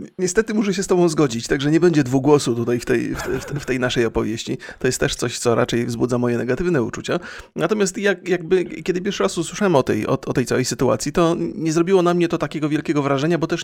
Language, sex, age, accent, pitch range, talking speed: Polish, male, 30-49, native, 135-175 Hz, 215 wpm